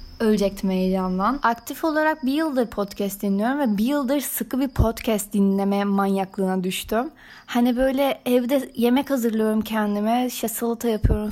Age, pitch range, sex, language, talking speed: 20-39, 205-250 Hz, female, Turkish, 140 wpm